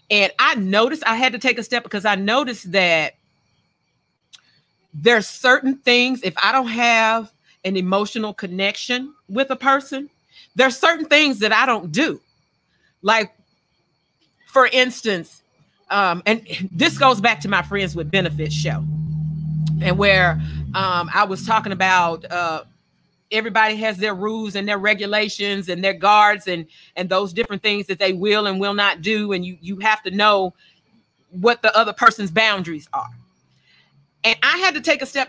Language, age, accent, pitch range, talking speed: English, 40-59, American, 185-245 Hz, 165 wpm